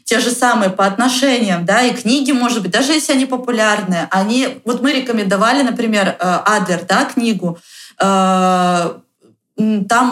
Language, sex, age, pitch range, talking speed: Russian, female, 20-39, 190-240 Hz, 135 wpm